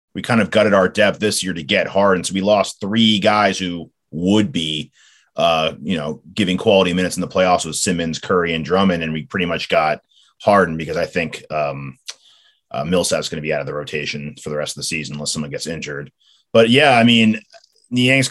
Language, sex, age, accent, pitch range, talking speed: English, male, 30-49, American, 95-115 Hz, 220 wpm